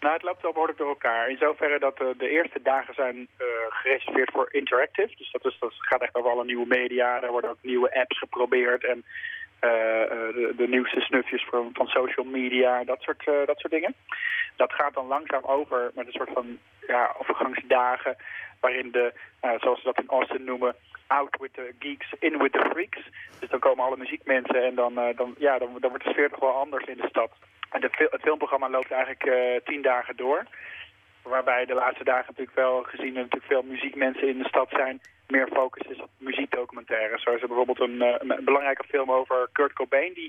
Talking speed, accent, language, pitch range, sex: 210 wpm, Dutch, Dutch, 125-145 Hz, male